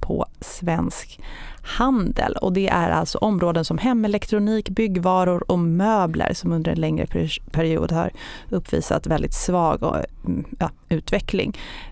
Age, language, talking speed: 30-49, Swedish, 115 wpm